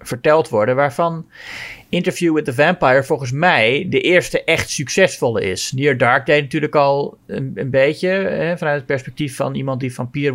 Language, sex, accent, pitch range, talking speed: Dutch, male, Dutch, 125-155 Hz, 170 wpm